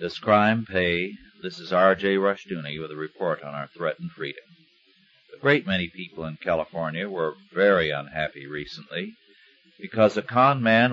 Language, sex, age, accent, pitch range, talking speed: English, male, 50-69, American, 90-115 Hz, 155 wpm